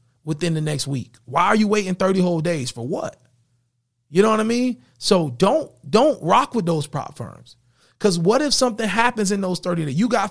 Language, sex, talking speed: English, male, 215 wpm